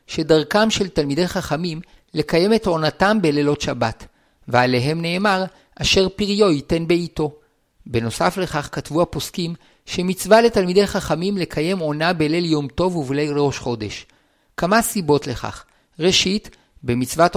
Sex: male